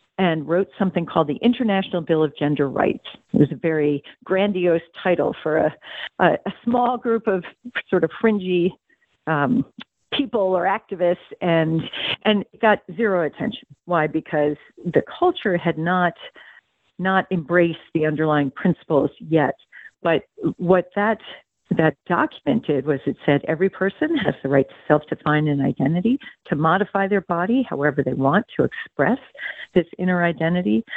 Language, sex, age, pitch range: English, female, 50-69, 155-195 Hz